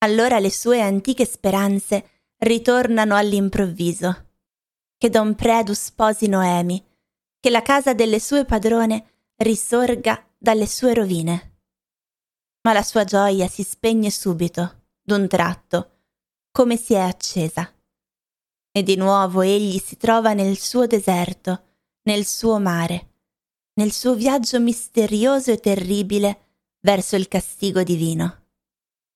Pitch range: 185-225 Hz